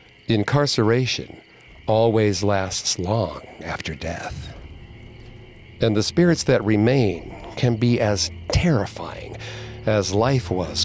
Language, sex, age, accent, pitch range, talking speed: English, male, 50-69, American, 95-120 Hz, 100 wpm